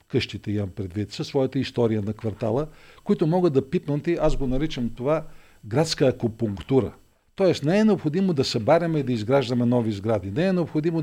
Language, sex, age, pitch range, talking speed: Bulgarian, male, 50-69, 115-145 Hz, 180 wpm